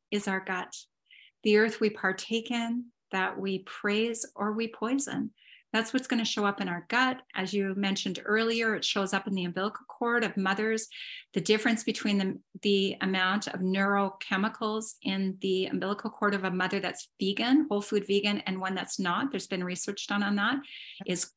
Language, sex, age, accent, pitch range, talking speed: English, female, 40-59, American, 190-225 Hz, 190 wpm